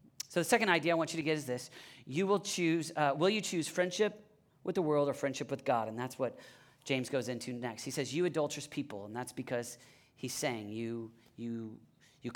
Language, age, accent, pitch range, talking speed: English, 40-59, American, 130-170 Hz, 225 wpm